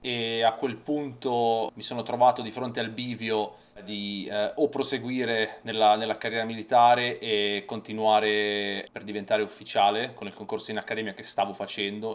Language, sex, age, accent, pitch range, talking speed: Italian, male, 30-49, native, 105-125 Hz, 160 wpm